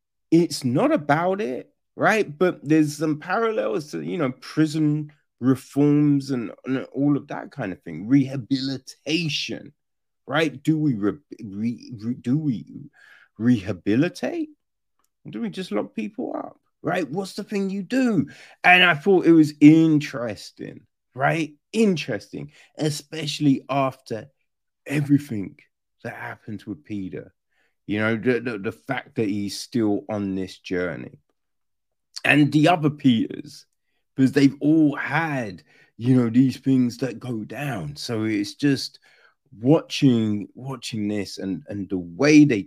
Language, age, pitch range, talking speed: English, 30-49, 115-155 Hz, 140 wpm